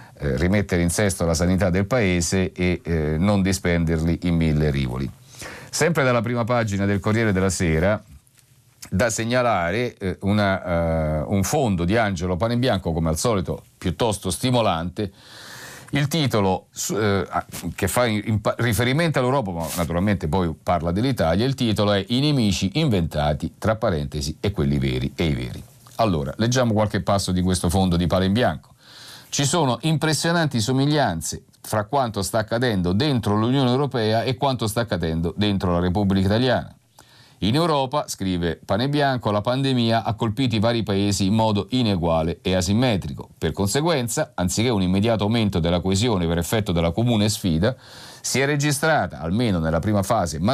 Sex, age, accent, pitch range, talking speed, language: male, 50-69, native, 90-125 Hz, 155 wpm, Italian